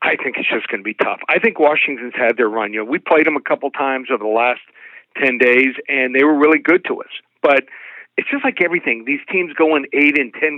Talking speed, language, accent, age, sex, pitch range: 260 wpm, English, American, 50-69, male, 135-175 Hz